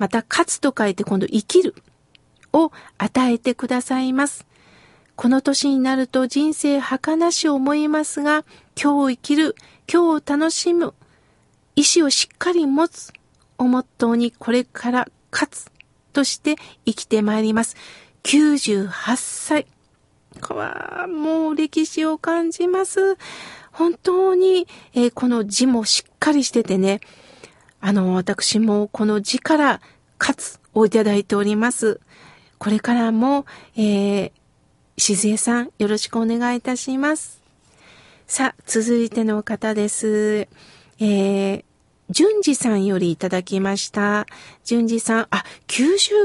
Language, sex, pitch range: Japanese, female, 220-320 Hz